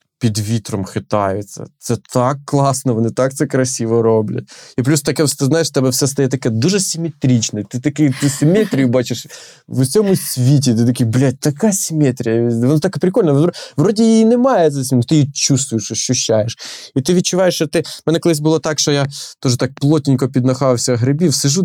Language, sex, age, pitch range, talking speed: Ukrainian, male, 20-39, 120-155 Hz, 185 wpm